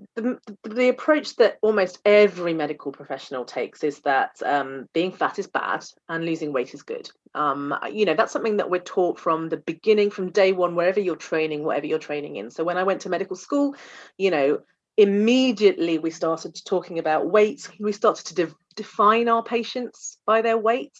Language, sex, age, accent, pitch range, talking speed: Portuguese, female, 30-49, British, 165-230 Hz, 190 wpm